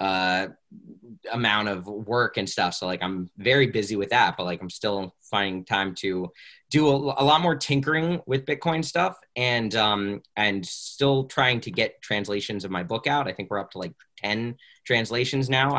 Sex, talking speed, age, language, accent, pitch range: male, 190 wpm, 20-39, English, American, 95-125 Hz